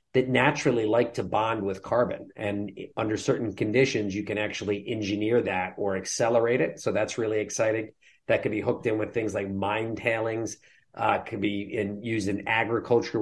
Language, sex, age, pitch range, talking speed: English, male, 40-59, 95-115 Hz, 175 wpm